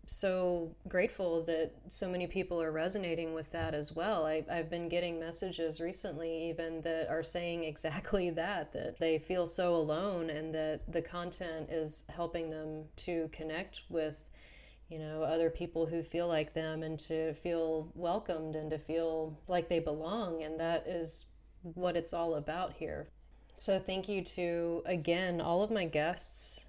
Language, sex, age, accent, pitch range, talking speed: English, female, 30-49, American, 160-180 Hz, 165 wpm